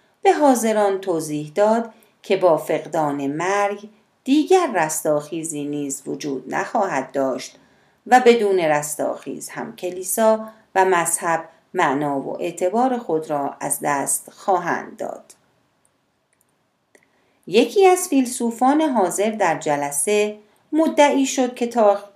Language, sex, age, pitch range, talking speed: Persian, female, 40-59, 155-235 Hz, 105 wpm